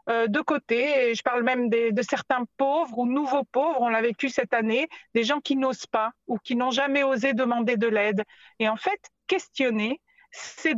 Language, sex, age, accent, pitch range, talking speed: French, female, 50-69, French, 230-290 Hz, 205 wpm